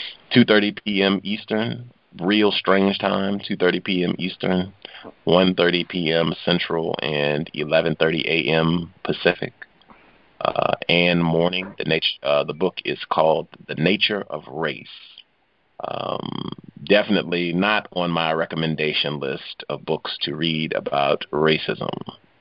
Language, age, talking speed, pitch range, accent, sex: English, 40-59, 115 wpm, 75-90 Hz, American, male